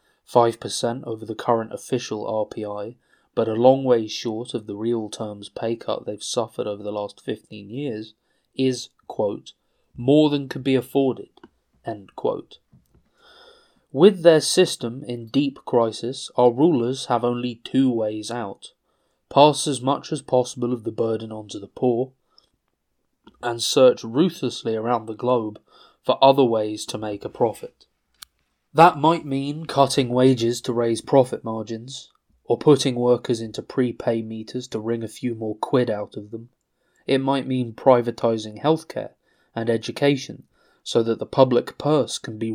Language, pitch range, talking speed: English, 115-135 Hz, 150 wpm